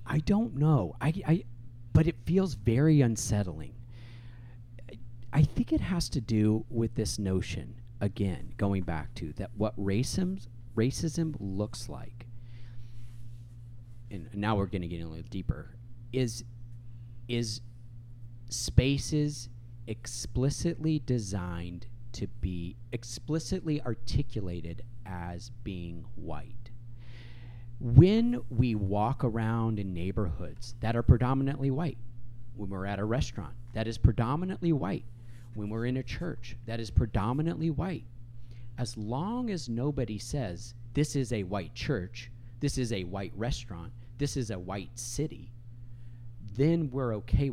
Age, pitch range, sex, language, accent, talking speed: 40-59, 110-125 Hz, male, English, American, 130 wpm